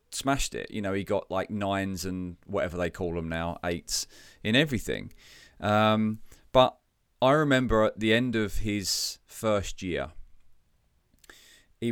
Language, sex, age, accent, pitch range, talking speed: English, male, 30-49, British, 95-115 Hz, 145 wpm